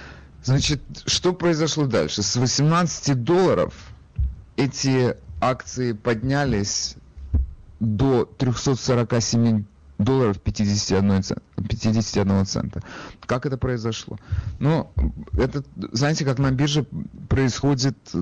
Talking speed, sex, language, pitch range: 80 wpm, male, Russian, 95-130 Hz